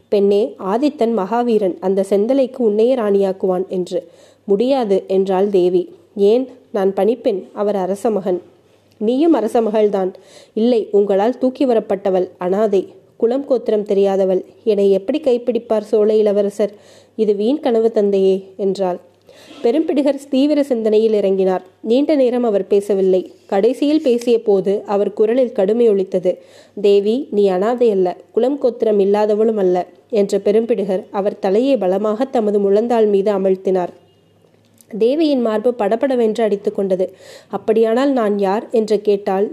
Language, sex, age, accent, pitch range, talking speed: Tamil, female, 20-39, native, 195-235 Hz, 110 wpm